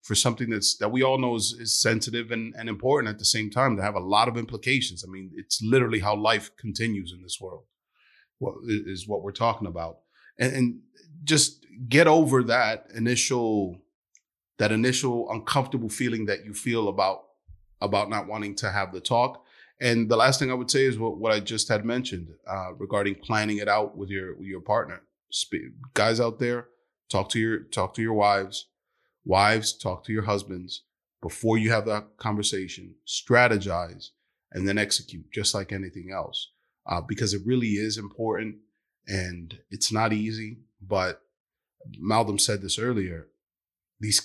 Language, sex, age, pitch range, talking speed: English, male, 30-49, 95-115 Hz, 170 wpm